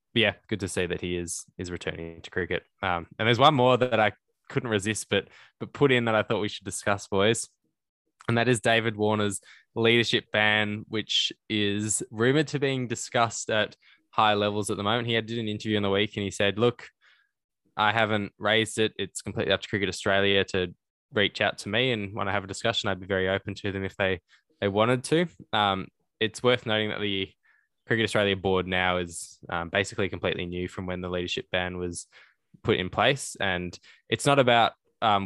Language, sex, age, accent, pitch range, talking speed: English, male, 10-29, Australian, 90-110 Hz, 210 wpm